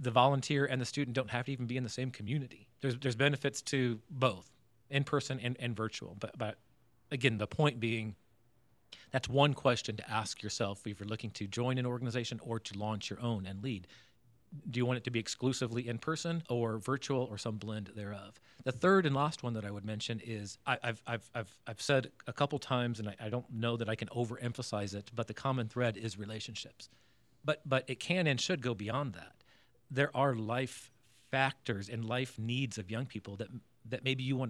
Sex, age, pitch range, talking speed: male, 40-59, 110-130 Hz, 205 wpm